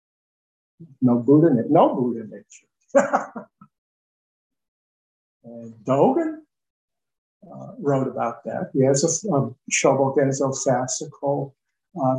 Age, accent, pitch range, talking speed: 60-79, American, 135-200 Hz, 90 wpm